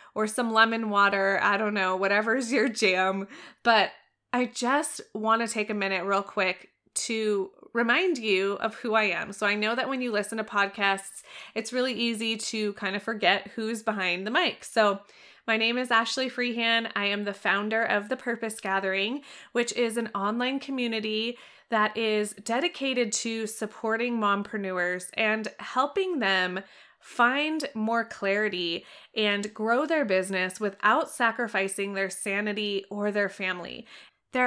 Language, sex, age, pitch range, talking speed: English, female, 20-39, 195-240 Hz, 155 wpm